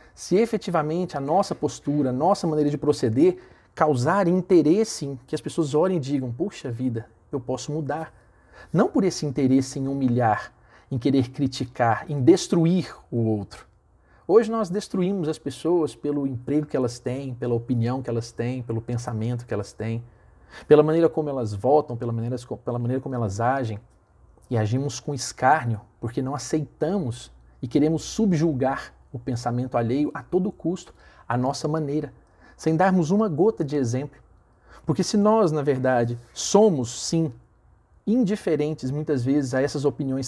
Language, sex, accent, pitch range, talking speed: Portuguese, male, Brazilian, 120-155 Hz, 160 wpm